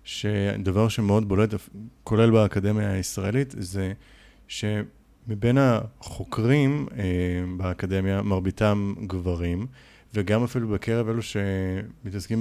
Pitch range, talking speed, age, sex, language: 95-120 Hz, 80 wpm, 30-49, male, Hebrew